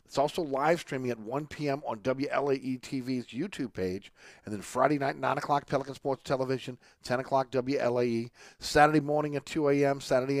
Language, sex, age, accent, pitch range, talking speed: English, male, 50-69, American, 115-140 Hz, 175 wpm